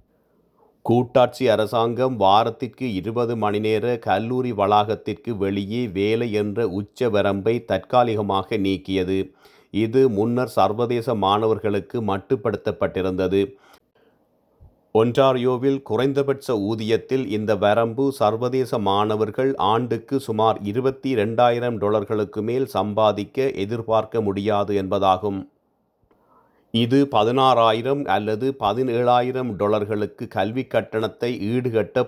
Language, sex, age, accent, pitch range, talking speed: Tamil, male, 40-59, native, 105-125 Hz, 80 wpm